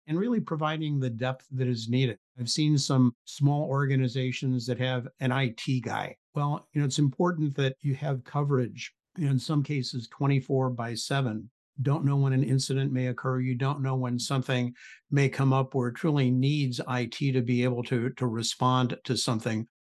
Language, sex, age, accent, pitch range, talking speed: English, male, 60-79, American, 125-140 Hz, 190 wpm